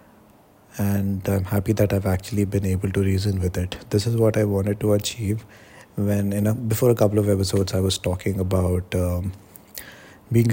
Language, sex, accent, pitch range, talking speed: English, male, Indian, 95-110 Hz, 190 wpm